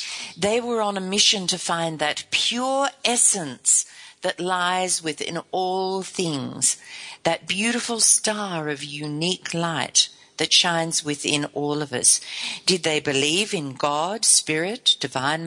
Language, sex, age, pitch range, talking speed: English, female, 50-69, 155-225 Hz, 130 wpm